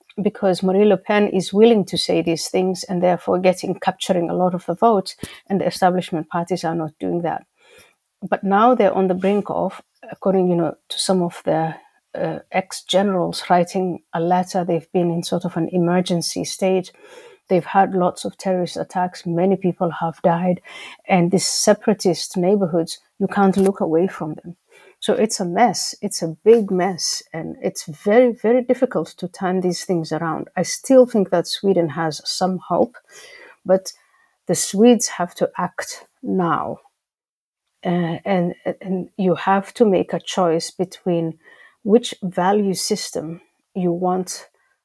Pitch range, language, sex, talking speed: 175-205 Hz, Swedish, female, 165 wpm